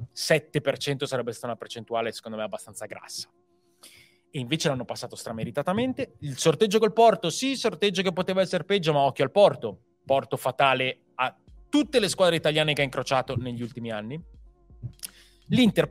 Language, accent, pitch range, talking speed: Italian, native, 115-155 Hz, 160 wpm